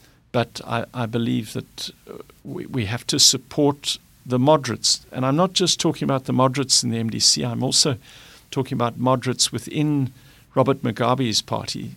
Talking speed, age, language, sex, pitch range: 165 wpm, 50-69, English, male, 110-130 Hz